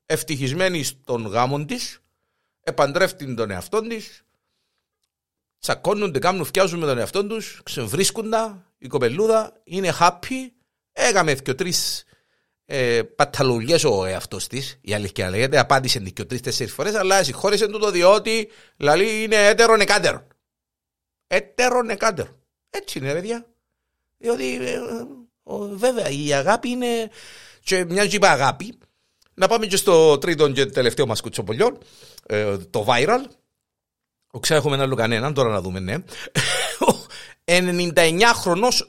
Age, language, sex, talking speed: 60-79, Greek, male, 140 wpm